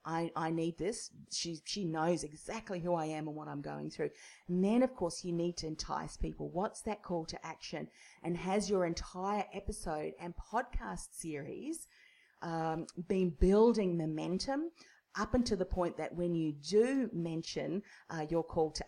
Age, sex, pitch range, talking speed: 40-59, female, 155-195 Hz, 175 wpm